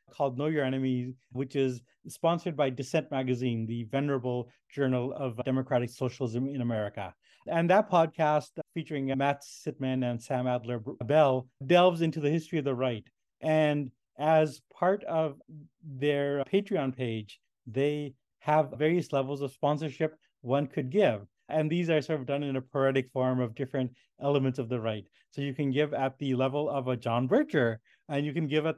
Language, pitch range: English, 130-155 Hz